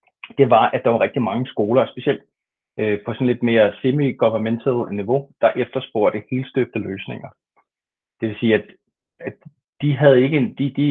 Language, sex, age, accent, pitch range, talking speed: Danish, male, 30-49, native, 110-130 Hz, 160 wpm